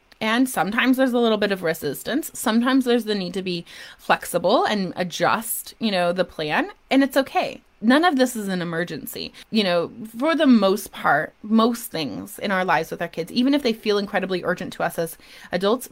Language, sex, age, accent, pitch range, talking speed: English, female, 20-39, American, 185-260 Hz, 205 wpm